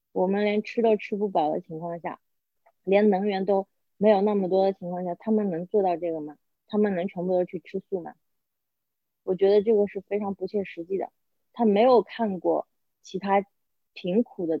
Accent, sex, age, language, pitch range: native, female, 20-39, Chinese, 175-205 Hz